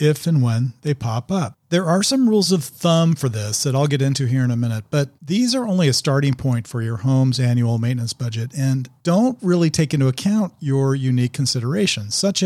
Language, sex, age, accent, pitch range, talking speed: English, male, 40-59, American, 120-160 Hz, 215 wpm